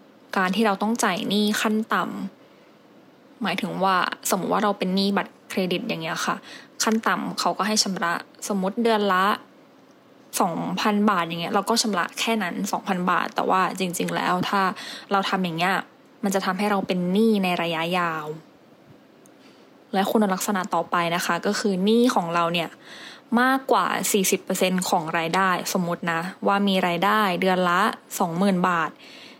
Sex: female